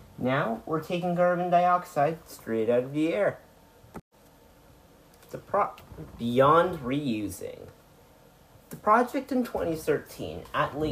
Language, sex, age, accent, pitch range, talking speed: English, male, 30-49, American, 120-180 Hz, 105 wpm